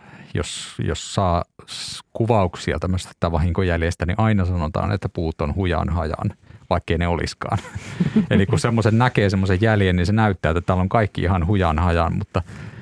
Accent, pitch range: native, 85-105 Hz